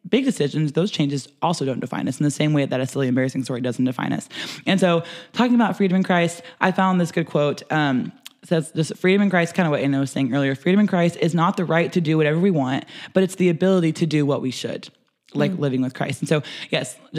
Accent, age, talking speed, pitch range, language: American, 20-39, 255 wpm, 150-185 Hz, English